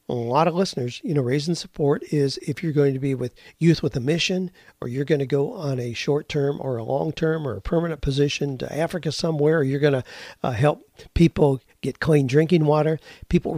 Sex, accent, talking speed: male, American, 225 wpm